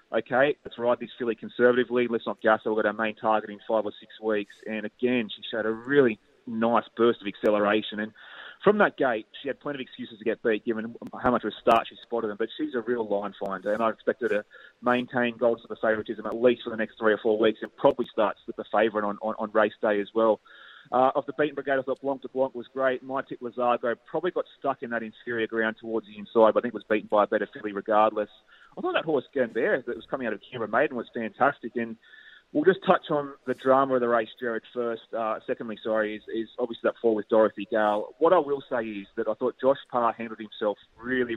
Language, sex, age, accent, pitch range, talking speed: English, male, 30-49, Australian, 110-125 Hz, 250 wpm